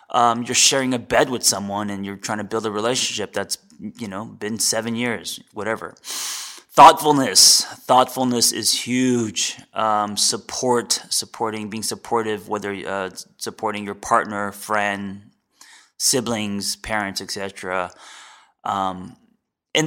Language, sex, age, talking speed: English, male, 20-39, 120 wpm